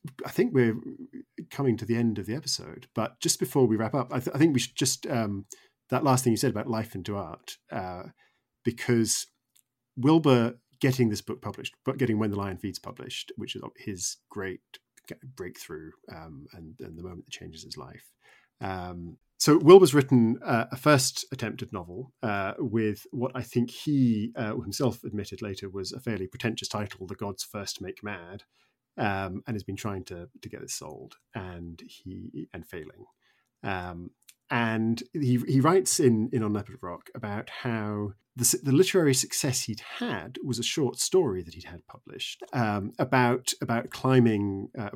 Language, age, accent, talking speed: English, 40-59, British, 180 wpm